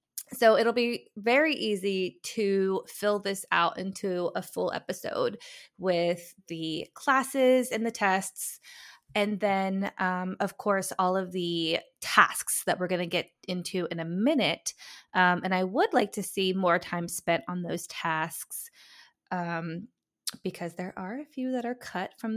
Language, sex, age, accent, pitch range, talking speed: English, female, 20-39, American, 175-215 Hz, 160 wpm